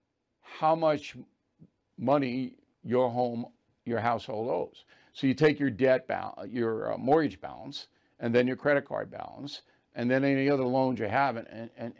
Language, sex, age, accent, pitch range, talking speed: English, male, 60-79, American, 125-155 Hz, 160 wpm